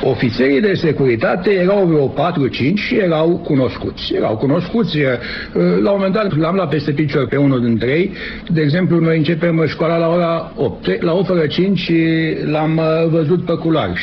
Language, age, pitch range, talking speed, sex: Romanian, 60-79, 125-180 Hz, 165 wpm, male